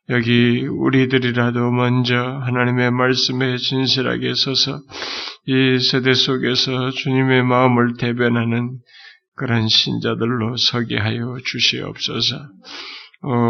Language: Korean